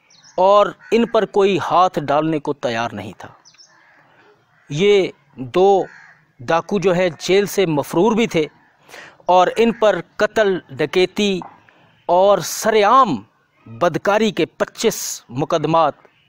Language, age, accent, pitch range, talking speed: Hindi, 40-59, native, 155-200 Hz, 115 wpm